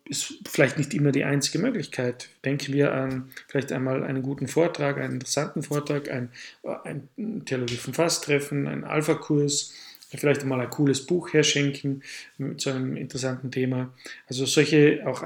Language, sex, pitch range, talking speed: German, male, 135-155 Hz, 150 wpm